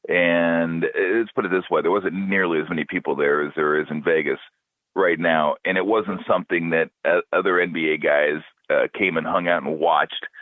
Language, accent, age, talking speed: English, American, 40-59, 200 wpm